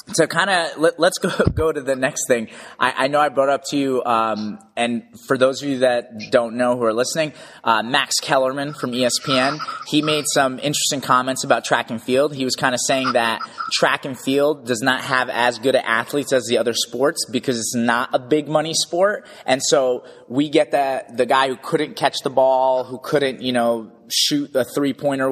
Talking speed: 215 wpm